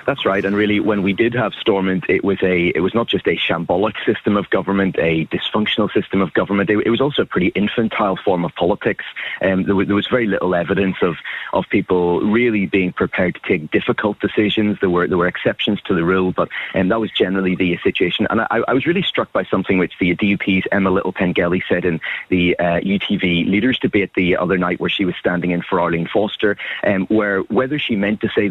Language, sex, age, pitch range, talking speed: English, male, 30-49, 90-105 Hz, 225 wpm